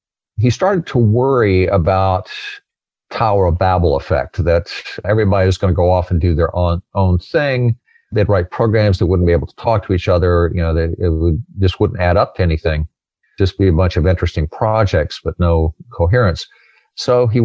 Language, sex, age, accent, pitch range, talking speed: English, male, 50-69, American, 85-110 Hz, 190 wpm